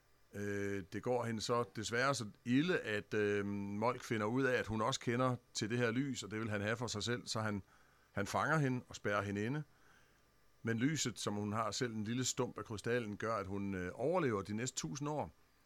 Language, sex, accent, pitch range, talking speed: Danish, male, native, 100-125 Hz, 220 wpm